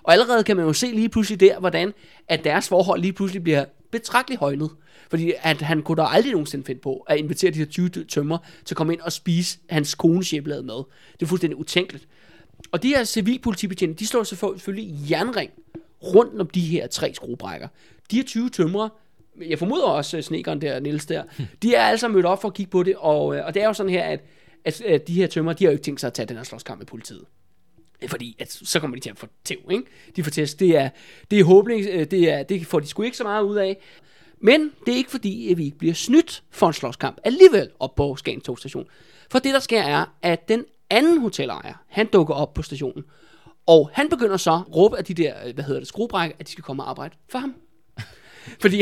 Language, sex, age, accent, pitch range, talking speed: Danish, male, 20-39, native, 160-220 Hz, 230 wpm